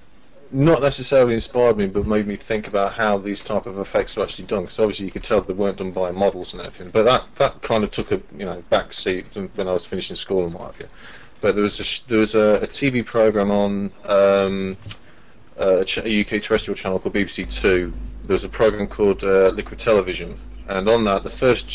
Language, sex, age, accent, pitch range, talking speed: English, male, 30-49, British, 95-110 Hz, 225 wpm